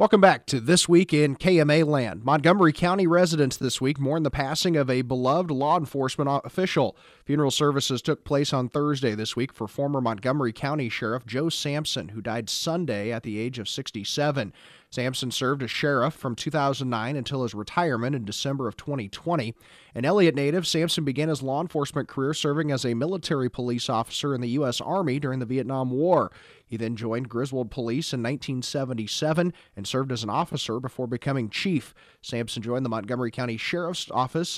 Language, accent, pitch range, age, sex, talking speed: English, American, 120-150 Hz, 30-49, male, 180 wpm